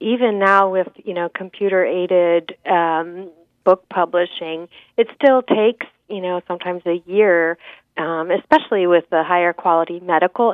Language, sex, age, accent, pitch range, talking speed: English, female, 40-59, American, 170-215 Hz, 130 wpm